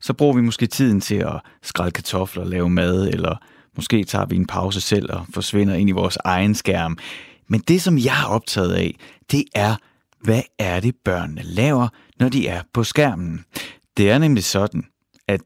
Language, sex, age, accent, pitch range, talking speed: Danish, male, 30-49, native, 100-140 Hz, 195 wpm